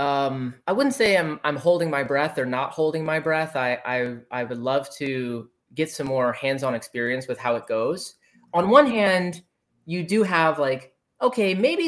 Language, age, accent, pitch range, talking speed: English, 20-39, American, 130-195 Hz, 190 wpm